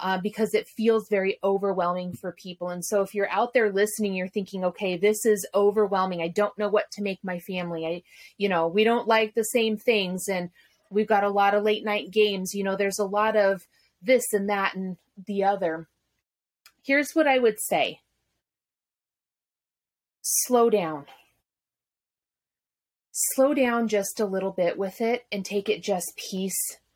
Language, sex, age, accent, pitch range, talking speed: English, female, 30-49, American, 185-225 Hz, 175 wpm